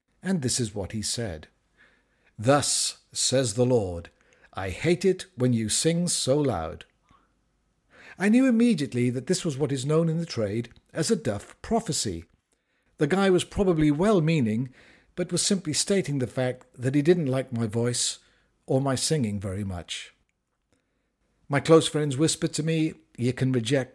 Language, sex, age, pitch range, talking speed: English, male, 50-69, 120-170 Hz, 165 wpm